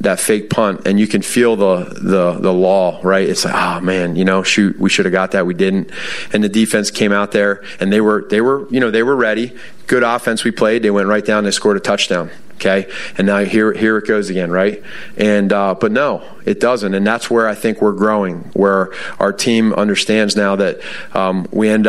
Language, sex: English, male